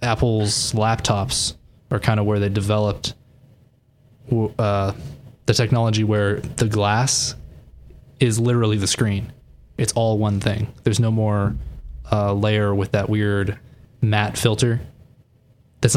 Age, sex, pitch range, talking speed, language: 20-39, male, 105-125 Hz, 125 wpm, English